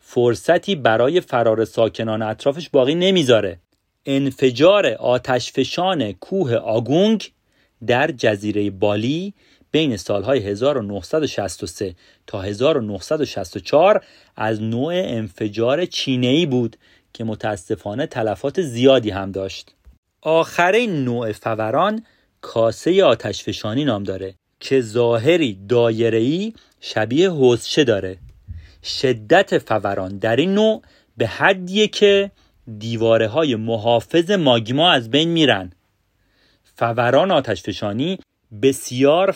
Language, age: Persian, 40-59